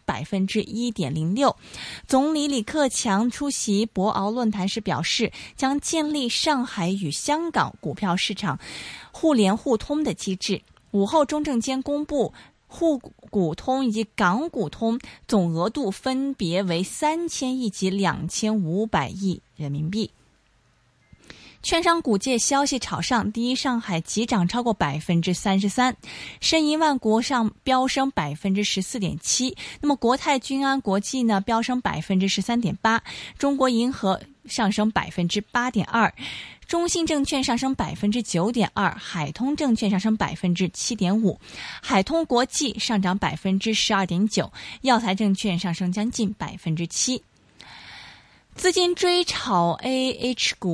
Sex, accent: female, native